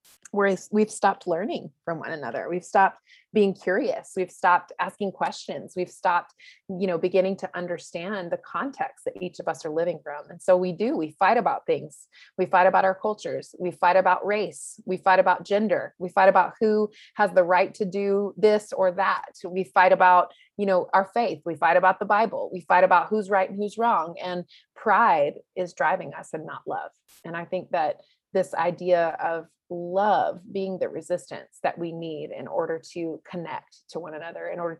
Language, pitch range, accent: English, 175-210 Hz, American